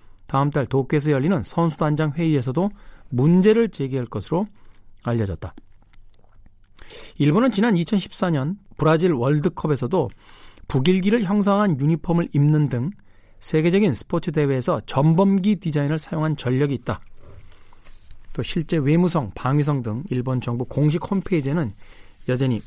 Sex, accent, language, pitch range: male, native, Korean, 110-170 Hz